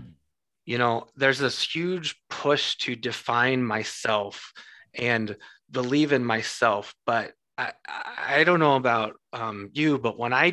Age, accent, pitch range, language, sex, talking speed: 30-49, American, 115-140 Hz, English, male, 135 wpm